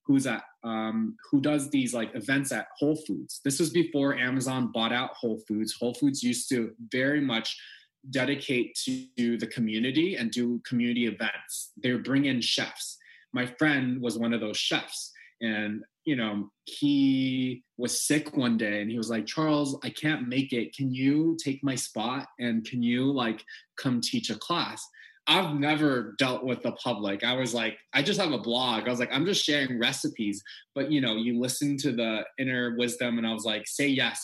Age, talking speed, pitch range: 20-39, 195 wpm, 115-145 Hz